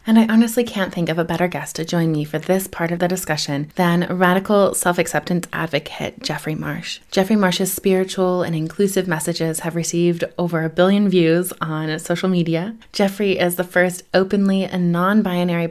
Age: 20-39